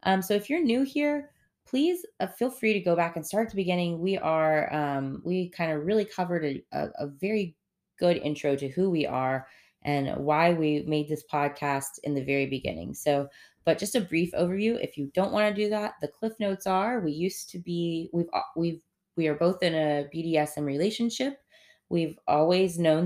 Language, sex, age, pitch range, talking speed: English, female, 20-39, 150-195 Hz, 205 wpm